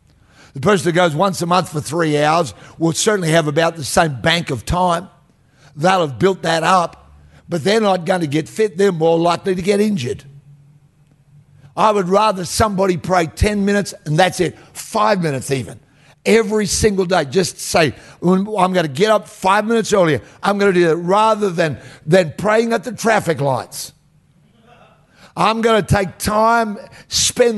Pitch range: 150-205 Hz